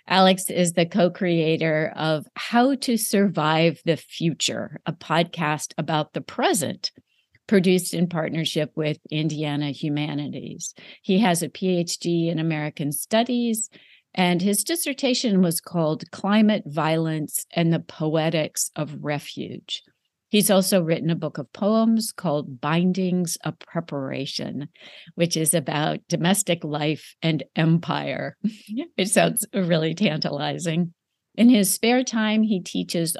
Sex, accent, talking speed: female, American, 125 wpm